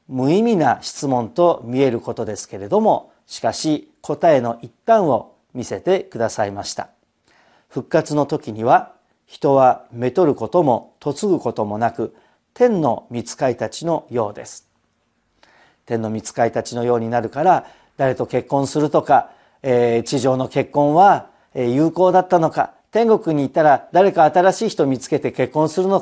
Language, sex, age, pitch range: Japanese, male, 40-59, 120-165 Hz